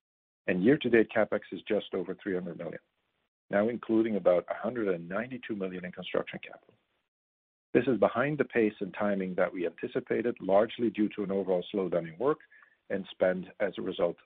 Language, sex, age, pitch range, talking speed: English, male, 50-69, 90-120 Hz, 165 wpm